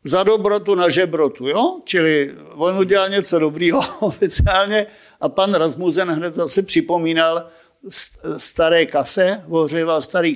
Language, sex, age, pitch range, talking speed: Czech, male, 50-69, 155-200 Hz, 120 wpm